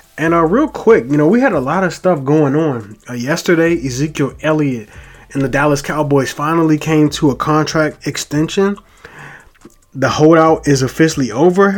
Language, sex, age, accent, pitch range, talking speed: English, male, 20-39, American, 135-165 Hz, 170 wpm